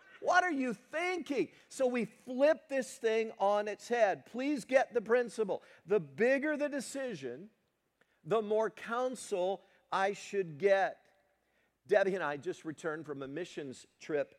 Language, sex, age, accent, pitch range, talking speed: English, male, 50-69, American, 125-205 Hz, 145 wpm